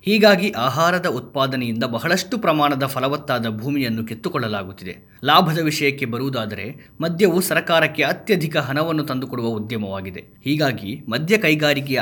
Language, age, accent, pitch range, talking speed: Kannada, 20-39, native, 125-165 Hz, 100 wpm